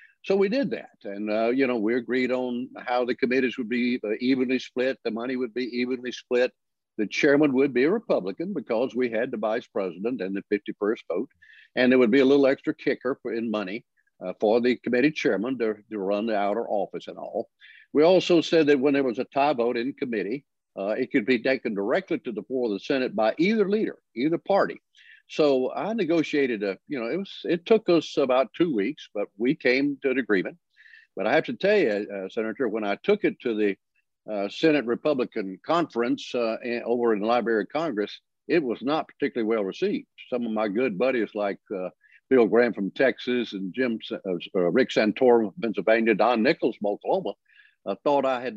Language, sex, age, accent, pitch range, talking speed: English, male, 60-79, American, 115-145 Hz, 210 wpm